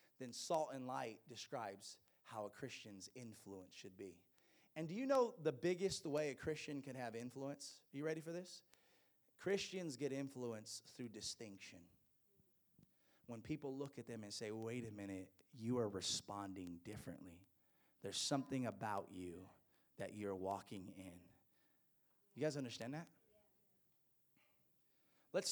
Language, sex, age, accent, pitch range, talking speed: English, male, 30-49, American, 110-160 Hz, 140 wpm